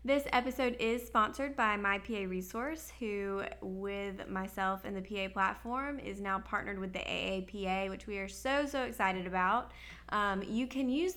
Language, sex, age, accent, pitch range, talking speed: English, female, 20-39, American, 195-245 Hz, 165 wpm